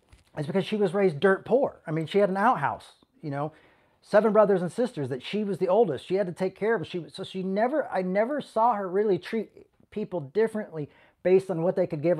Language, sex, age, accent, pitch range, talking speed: English, male, 40-59, American, 135-190 Hz, 235 wpm